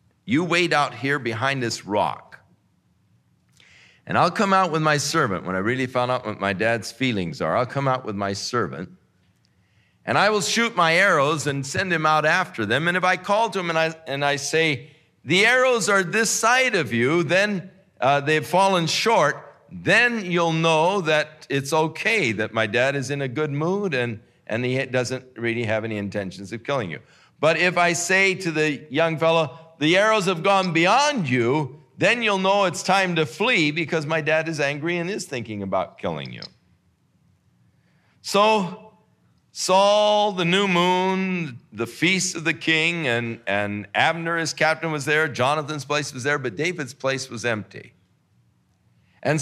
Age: 50-69